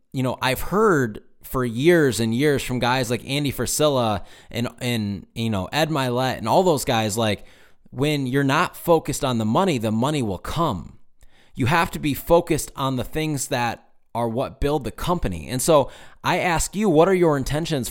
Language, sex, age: English, male, 20-39